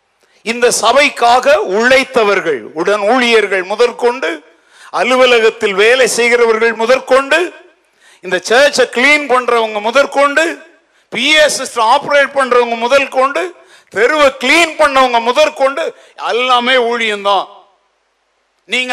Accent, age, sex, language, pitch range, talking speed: native, 50-69, male, Tamil, 225-285 Hz, 55 wpm